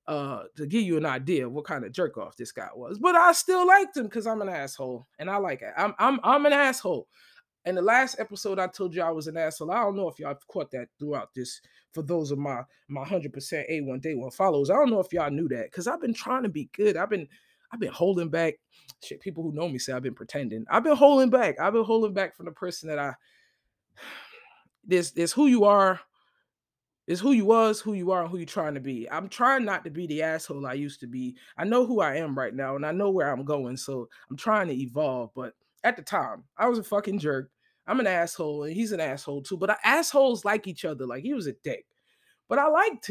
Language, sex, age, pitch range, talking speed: English, male, 20-39, 145-230 Hz, 255 wpm